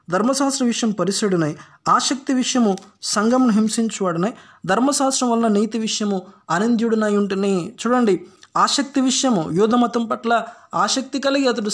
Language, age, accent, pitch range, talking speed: Telugu, 20-39, native, 185-235 Hz, 105 wpm